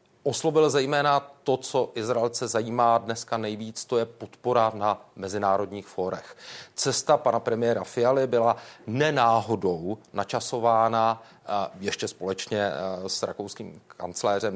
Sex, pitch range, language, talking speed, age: male, 110-125 Hz, Czech, 105 wpm, 40-59